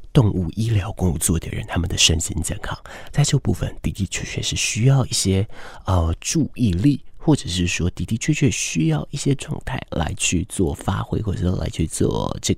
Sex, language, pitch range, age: male, Chinese, 85-110 Hz, 30-49